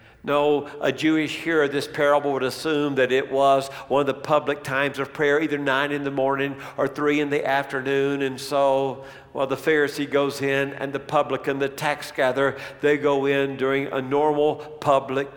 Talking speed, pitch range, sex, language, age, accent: 195 wpm, 135-170 Hz, male, English, 60-79, American